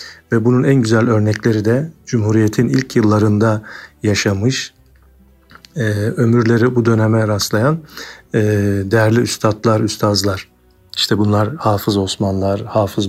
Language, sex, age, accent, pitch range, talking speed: Turkish, male, 50-69, native, 105-120 Hz, 100 wpm